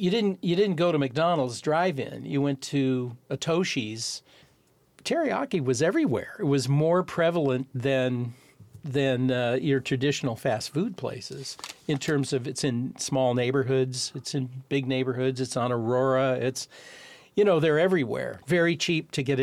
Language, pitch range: English, 130-150 Hz